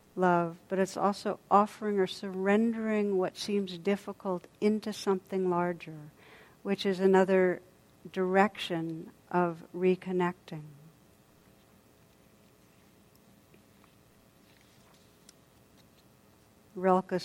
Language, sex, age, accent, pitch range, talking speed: English, female, 60-79, American, 180-200 Hz, 70 wpm